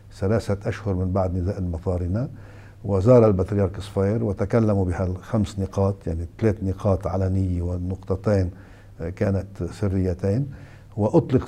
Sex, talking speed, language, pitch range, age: male, 110 wpm, Arabic, 95-110 Hz, 60-79